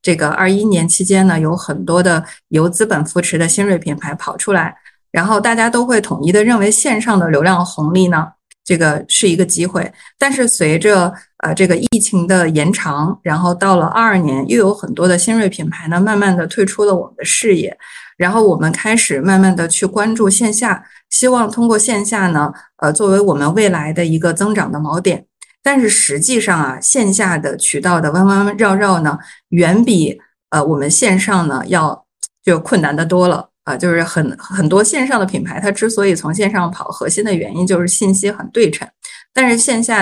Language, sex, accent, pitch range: Chinese, female, native, 170-210 Hz